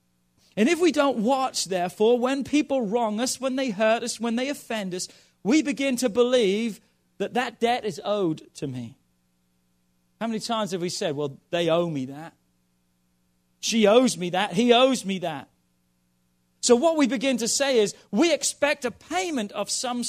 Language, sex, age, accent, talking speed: English, male, 40-59, British, 180 wpm